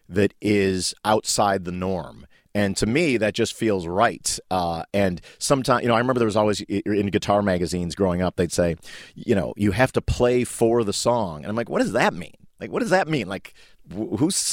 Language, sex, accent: German, male, American